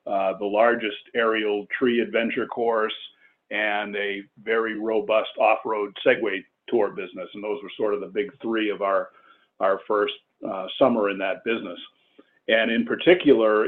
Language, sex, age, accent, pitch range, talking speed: English, male, 50-69, American, 100-120 Hz, 155 wpm